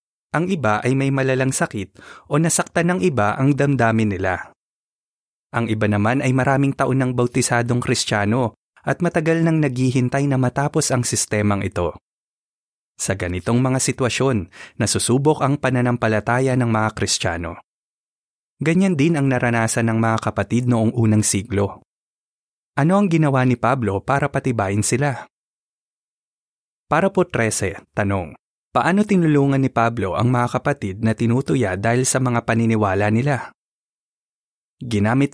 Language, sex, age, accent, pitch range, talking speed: Filipino, male, 20-39, native, 110-140 Hz, 130 wpm